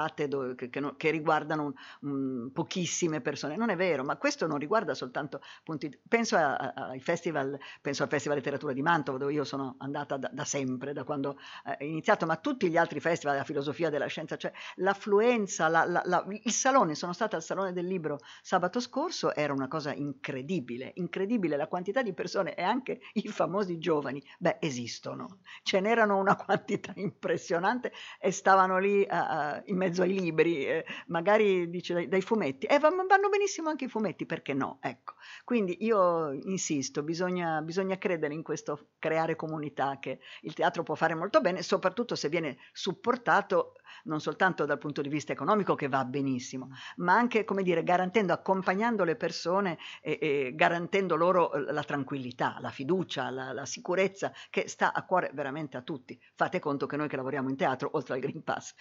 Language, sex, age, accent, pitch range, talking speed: Italian, female, 50-69, native, 145-195 Hz, 175 wpm